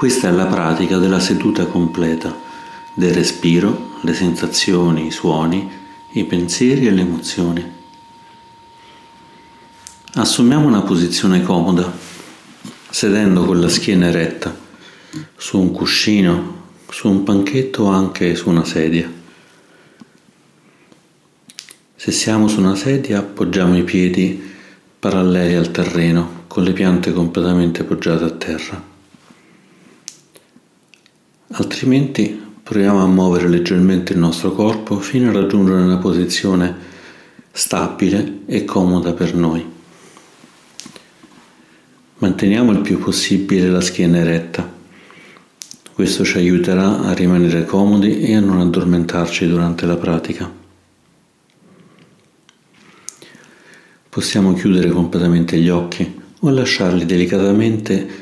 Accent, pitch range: native, 85-100 Hz